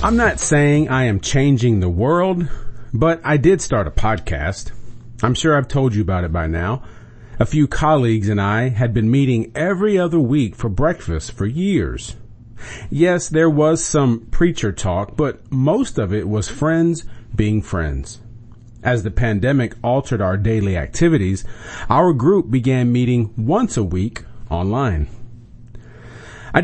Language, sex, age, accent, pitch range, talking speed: English, male, 40-59, American, 105-140 Hz, 155 wpm